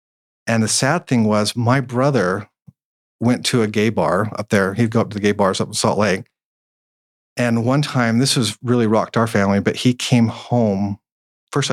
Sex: male